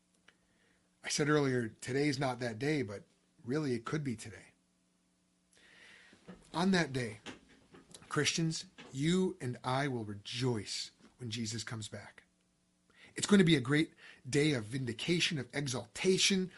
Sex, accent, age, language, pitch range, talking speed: male, American, 30-49, English, 100-170 Hz, 135 wpm